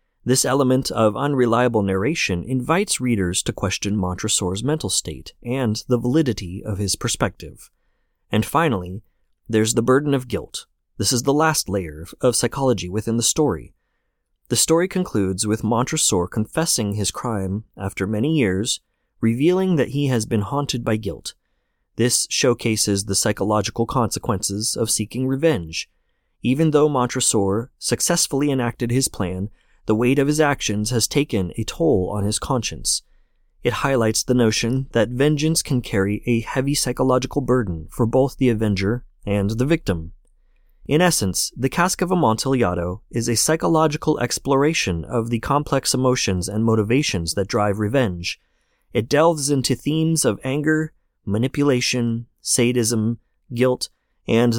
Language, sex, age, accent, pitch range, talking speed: English, male, 30-49, American, 105-135 Hz, 140 wpm